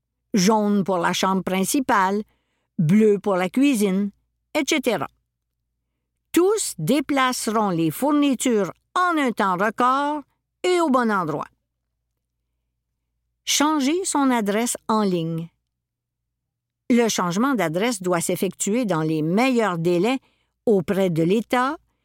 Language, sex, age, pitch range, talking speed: French, female, 50-69, 175-260 Hz, 105 wpm